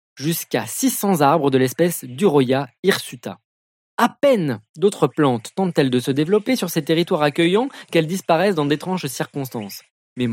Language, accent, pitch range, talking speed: French, French, 135-190 Hz, 145 wpm